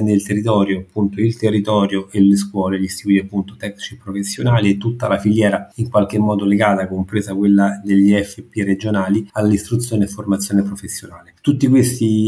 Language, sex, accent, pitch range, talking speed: Italian, male, native, 100-115 Hz, 155 wpm